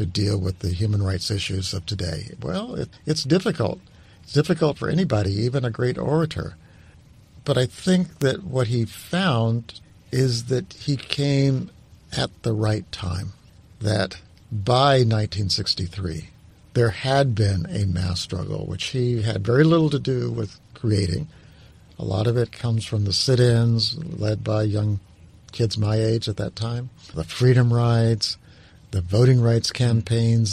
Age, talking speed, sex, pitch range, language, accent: 50-69, 150 wpm, male, 95-125 Hz, English, American